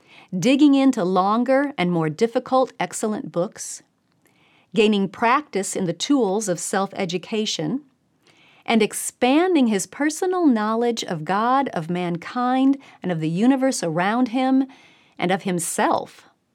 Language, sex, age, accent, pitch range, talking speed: English, female, 40-59, American, 170-250 Hz, 120 wpm